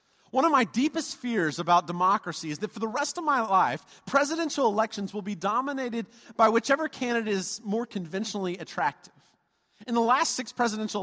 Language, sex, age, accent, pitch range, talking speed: English, male, 30-49, American, 170-240 Hz, 175 wpm